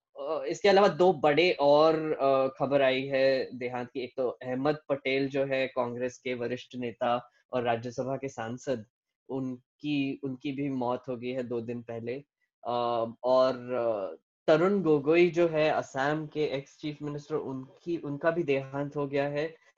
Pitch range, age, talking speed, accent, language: 125-150 Hz, 10-29, 155 wpm, native, Hindi